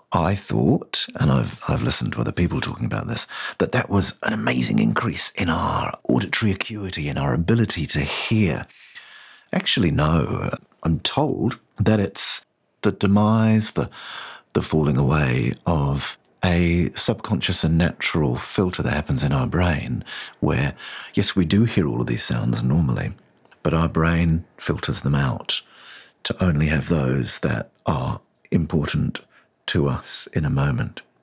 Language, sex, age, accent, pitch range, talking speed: English, male, 50-69, British, 70-110 Hz, 150 wpm